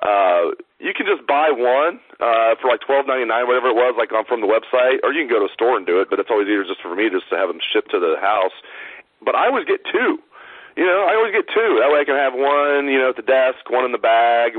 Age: 40-59